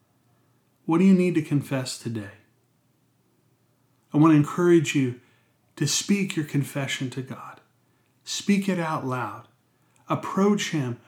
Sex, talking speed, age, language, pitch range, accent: male, 130 wpm, 30-49, English, 120-155 Hz, American